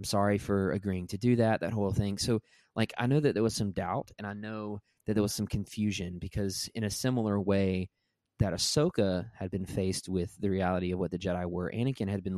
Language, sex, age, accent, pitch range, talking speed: English, male, 20-39, American, 95-110 Hz, 235 wpm